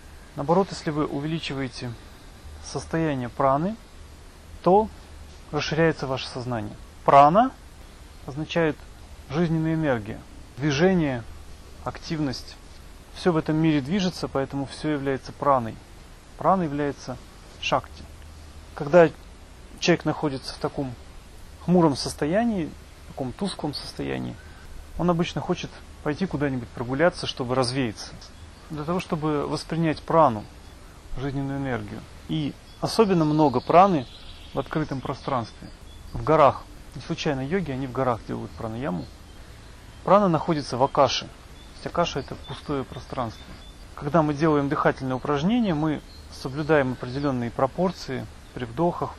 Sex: male